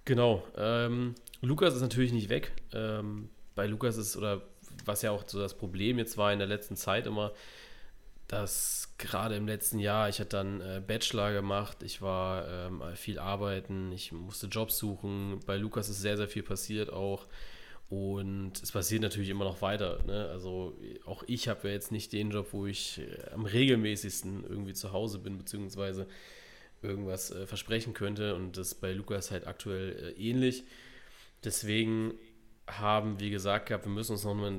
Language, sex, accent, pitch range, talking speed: German, male, German, 95-110 Hz, 175 wpm